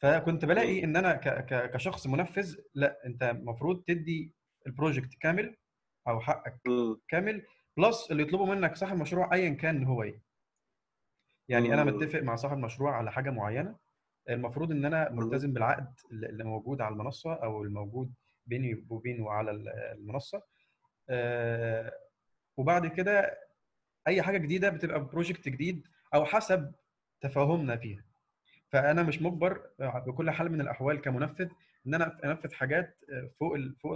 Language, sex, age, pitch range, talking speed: Arabic, male, 20-39, 120-170 Hz, 135 wpm